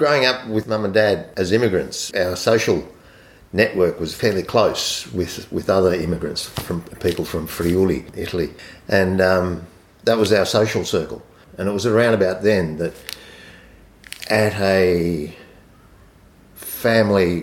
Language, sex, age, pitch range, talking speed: English, male, 50-69, 85-110 Hz, 140 wpm